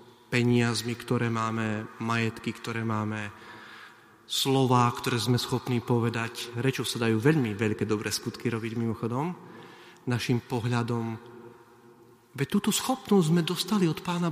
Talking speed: 120 wpm